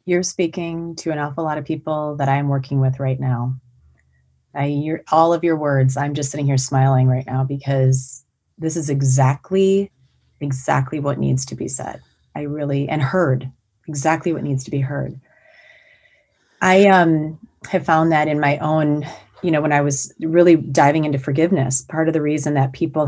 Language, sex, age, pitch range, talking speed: English, female, 30-49, 140-165 Hz, 175 wpm